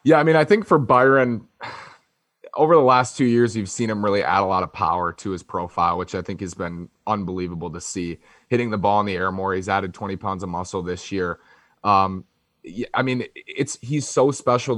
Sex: male